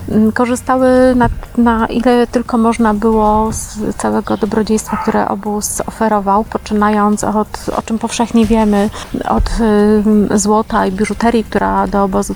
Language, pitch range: Polish, 210-235 Hz